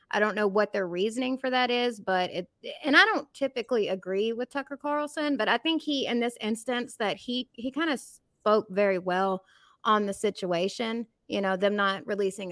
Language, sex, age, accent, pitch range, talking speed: English, female, 20-39, American, 190-240 Hz, 200 wpm